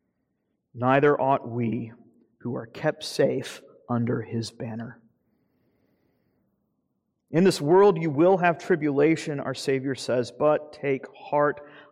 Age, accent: 40-59, American